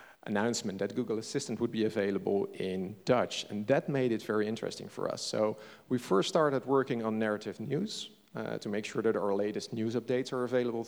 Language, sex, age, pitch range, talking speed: English, male, 40-59, 110-130 Hz, 200 wpm